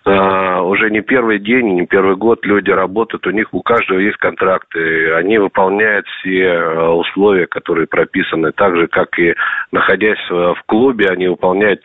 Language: Russian